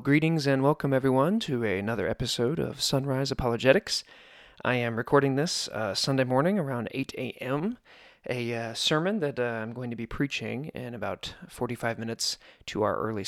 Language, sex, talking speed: English, male, 165 wpm